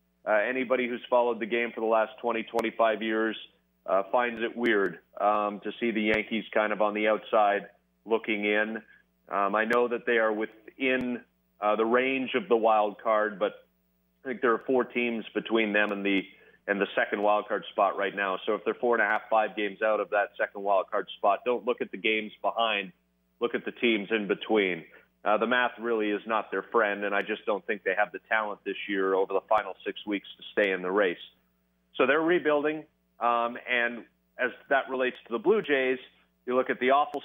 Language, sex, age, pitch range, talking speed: English, male, 30-49, 100-120 Hz, 215 wpm